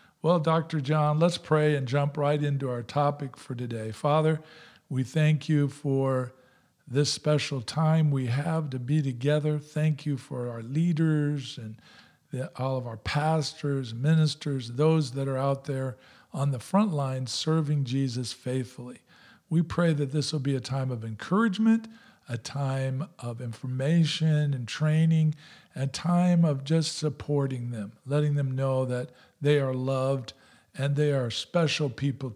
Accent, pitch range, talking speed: American, 130-155 Hz, 155 wpm